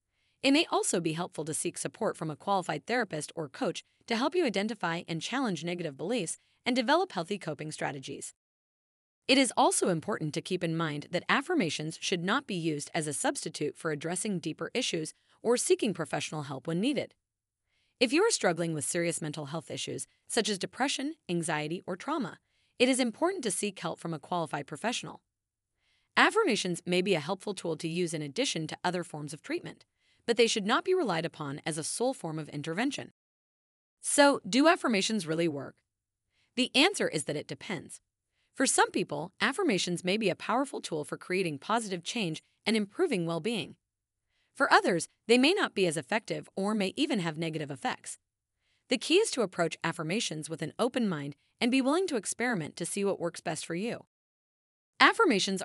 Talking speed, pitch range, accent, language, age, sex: 185 wpm, 160-240 Hz, American, English, 30-49, female